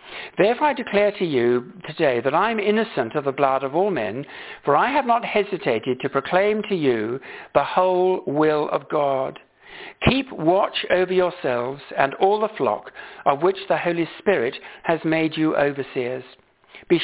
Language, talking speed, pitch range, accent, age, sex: English, 170 wpm, 155-230 Hz, British, 60-79, male